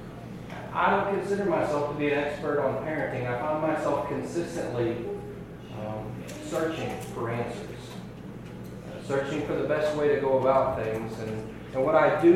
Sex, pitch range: male, 140-190 Hz